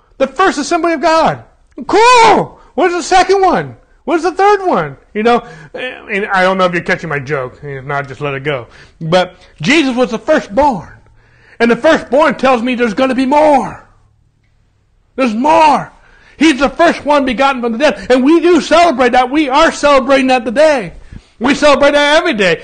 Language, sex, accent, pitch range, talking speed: English, male, American, 175-285 Hz, 195 wpm